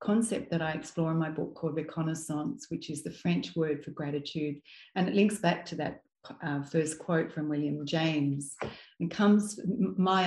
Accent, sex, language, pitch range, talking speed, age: Australian, female, English, 150-170 Hz, 180 wpm, 40-59